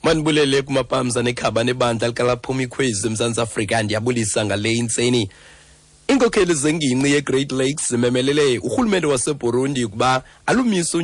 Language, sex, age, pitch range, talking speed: English, male, 40-59, 120-150 Hz, 145 wpm